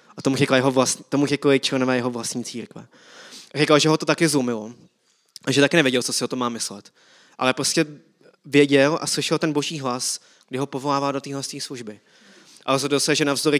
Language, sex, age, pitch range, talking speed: Czech, male, 20-39, 130-145 Hz, 195 wpm